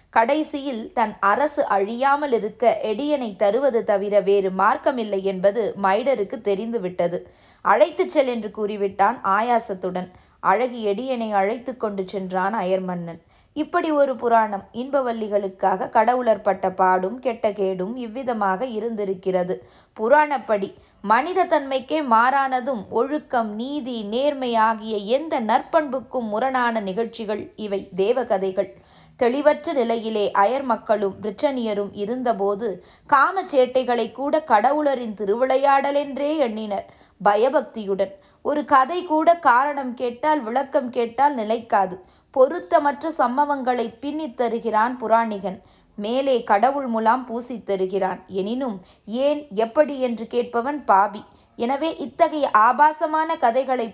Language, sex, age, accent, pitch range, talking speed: Tamil, female, 20-39, native, 205-275 Hz, 95 wpm